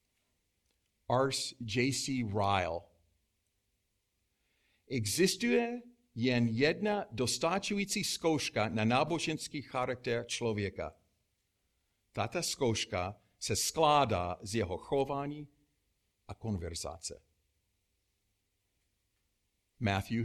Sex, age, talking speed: male, 50-69, 65 wpm